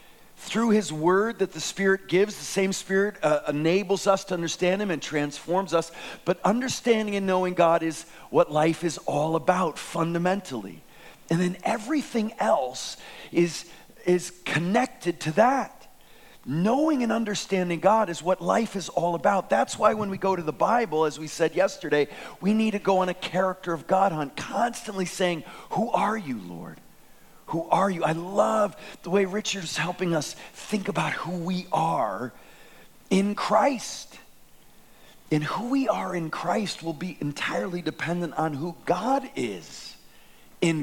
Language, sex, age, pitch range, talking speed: English, male, 40-59, 170-210 Hz, 160 wpm